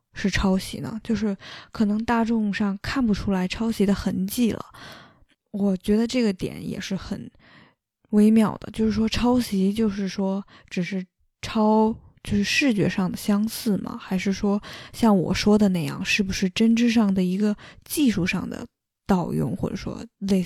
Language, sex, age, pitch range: Chinese, female, 10-29, 195-225 Hz